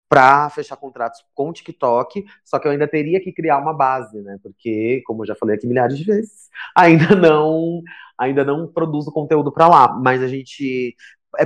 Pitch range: 125-150 Hz